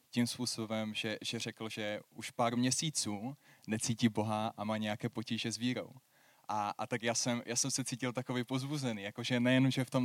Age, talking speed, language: 20-39, 195 wpm, Czech